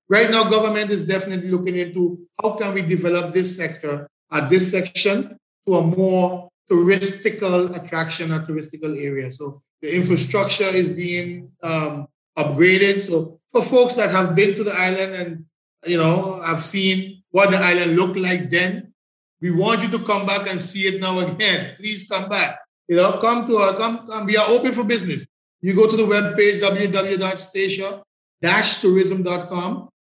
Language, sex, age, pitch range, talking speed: English, male, 50-69, 175-205 Hz, 165 wpm